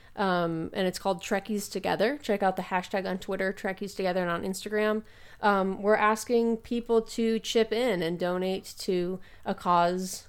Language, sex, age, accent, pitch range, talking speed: English, female, 30-49, American, 170-205 Hz, 170 wpm